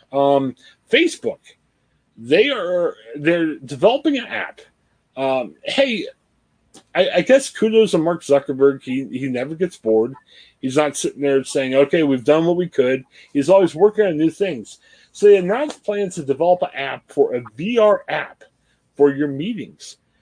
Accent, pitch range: American, 135-195 Hz